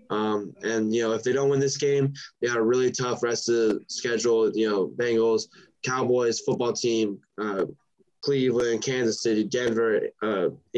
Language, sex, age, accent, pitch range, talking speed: English, male, 10-29, American, 115-130 Hz, 175 wpm